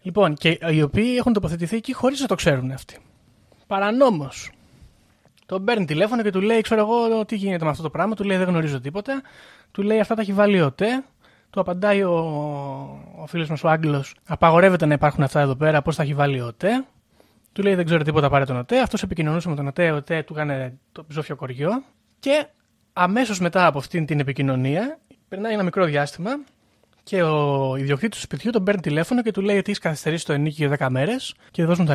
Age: 20-39